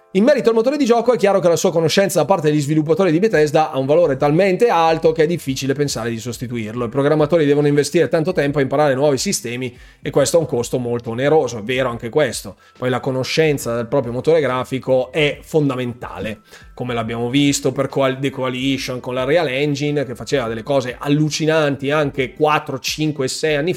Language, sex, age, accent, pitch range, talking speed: Italian, male, 20-39, native, 130-180 Hz, 200 wpm